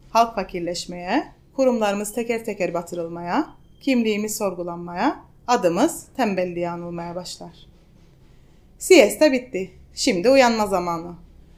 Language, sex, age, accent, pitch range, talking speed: Turkish, female, 30-49, native, 180-275 Hz, 90 wpm